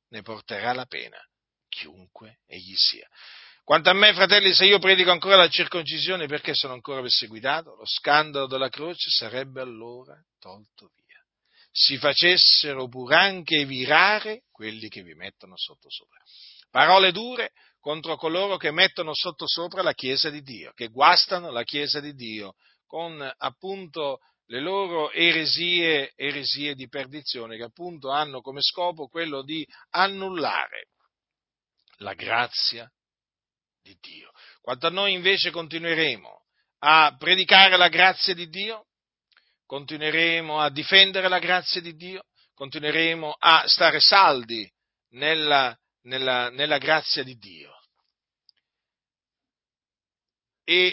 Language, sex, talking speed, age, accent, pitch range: Italian, male, 125 wpm, 40-59, native, 135-180 Hz